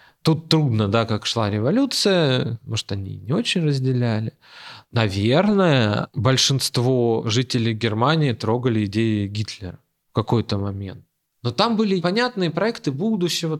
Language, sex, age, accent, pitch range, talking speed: Russian, male, 20-39, native, 115-155 Hz, 120 wpm